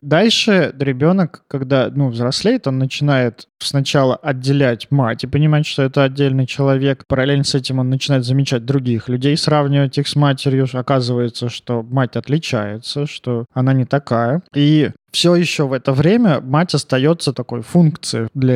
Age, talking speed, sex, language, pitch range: 20-39, 150 wpm, male, Russian, 125-150 Hz